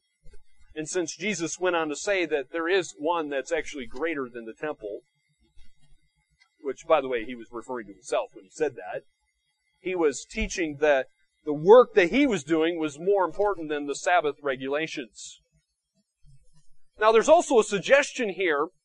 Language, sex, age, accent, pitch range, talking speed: English, male, 40-59, American, 145-220 Hz, 170 wpm